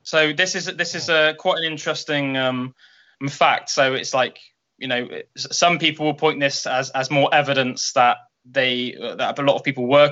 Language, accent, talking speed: English, British, 195 wpm